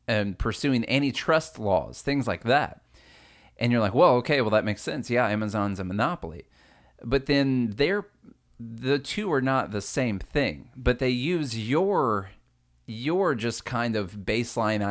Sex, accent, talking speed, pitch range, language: male, American, 155 wpm, 100-130 Hz, English